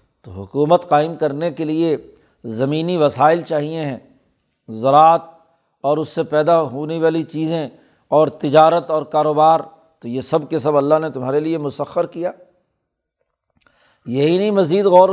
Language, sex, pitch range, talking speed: Urdu, male, 150-175 Hz, 145 wpm